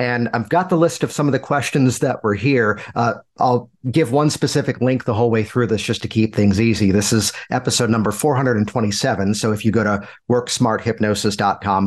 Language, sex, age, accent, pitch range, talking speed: English, male, 50-69, American, 110-135 Hz, 200 wpm